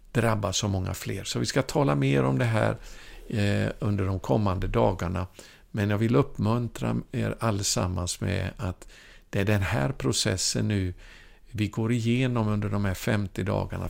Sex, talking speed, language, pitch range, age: male, 170 wpm, Swedish, 95-115 Hz, 50-69